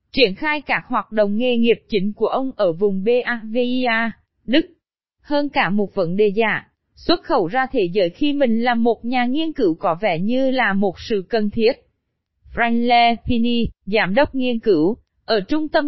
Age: 20-39